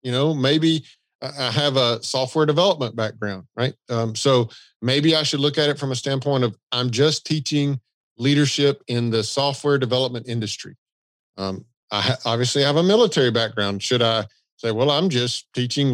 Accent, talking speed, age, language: American, 175 wpm, 40-59, English